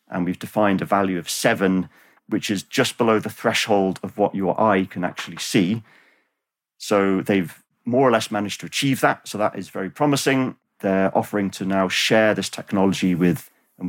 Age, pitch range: 40-59, 95-115 Hz